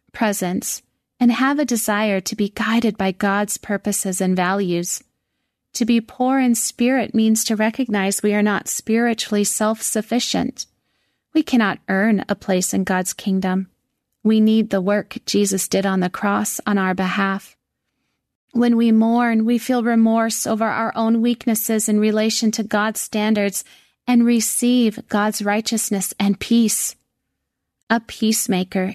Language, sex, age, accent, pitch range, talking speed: English, female, 30-49, American, 200-235 Hz, 145 wpm